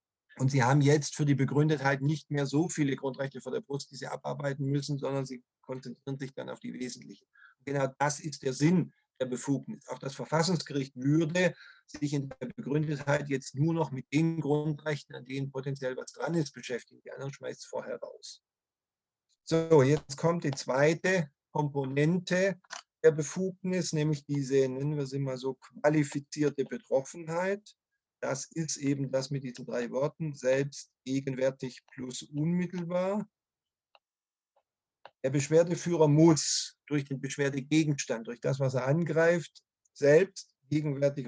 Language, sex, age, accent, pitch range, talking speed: Swedish, male, 50-69, German, 135-165 Hz, 150 wpm